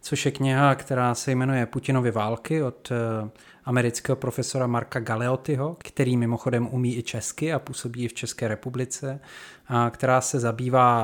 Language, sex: Czech, male